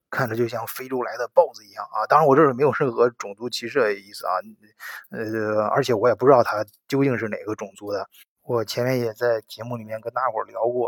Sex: male